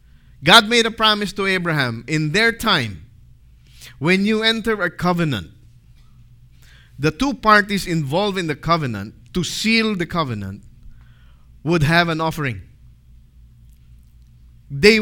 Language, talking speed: English, 120 wpm